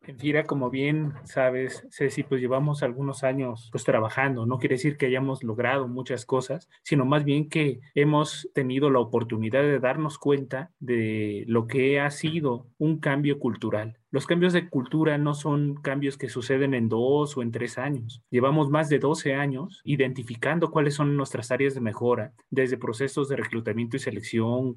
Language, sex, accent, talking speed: Spanish, male, Mexican, 170 wpm